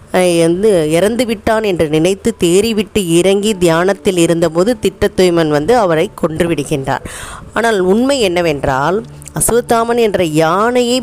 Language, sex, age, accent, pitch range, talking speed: Tamil, female, 20-39, native, 155-195 Hz, 105 wpm